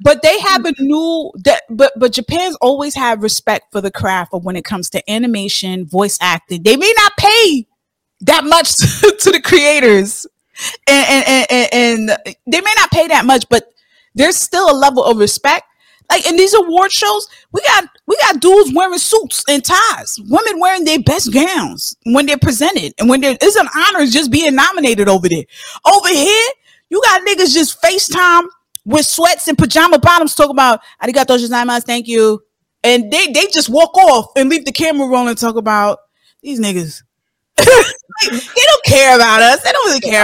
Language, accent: English, American